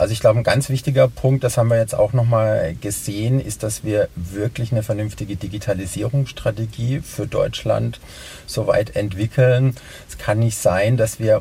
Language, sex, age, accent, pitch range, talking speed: German, male, 50-69, German, 100-120 Hz, 170 wpm